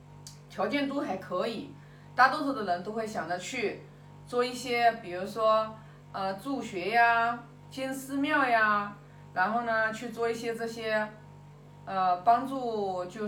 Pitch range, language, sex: 160-265 Hz, Chinese, female